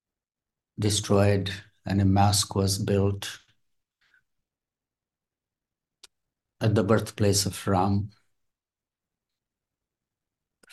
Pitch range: 100-110 Hz